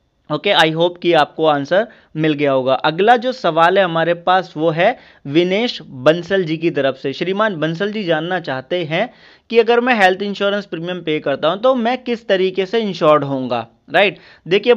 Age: 30-49